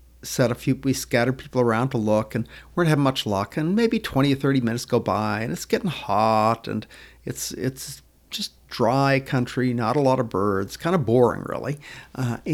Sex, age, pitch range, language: male, 50-69, 115-140 Hz, English